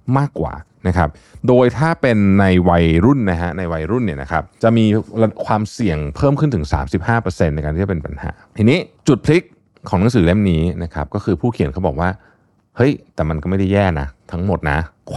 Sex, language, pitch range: male, Thai, 80-110 Hz